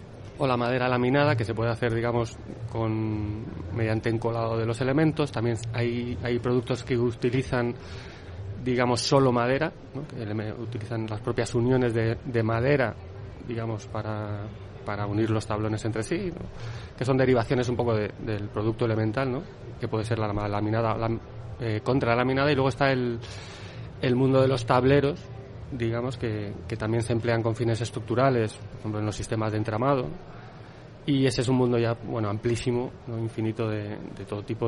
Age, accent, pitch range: 20-39, Spanish, 110-130 Hz